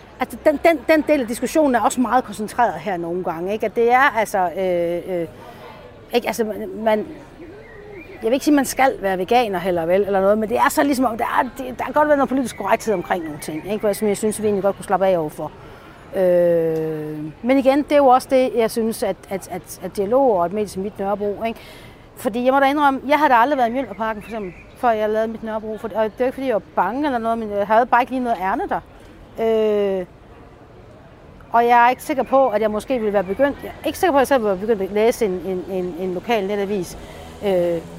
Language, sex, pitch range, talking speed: Danish, female, 195-270 Hz, 245 wpm